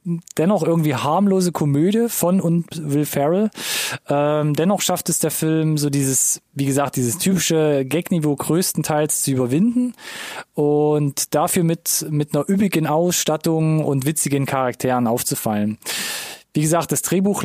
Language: German